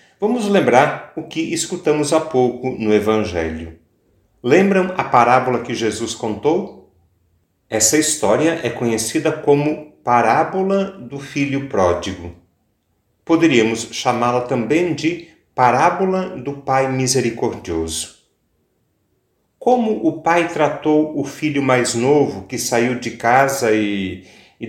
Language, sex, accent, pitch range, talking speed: Portuguese, male, Brazilian, 105-155 Hz, 110 wpm